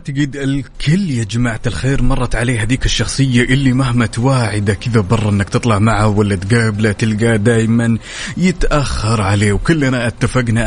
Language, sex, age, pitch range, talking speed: Arabic, male, 30-49, 115-145 Hz, 140 wpm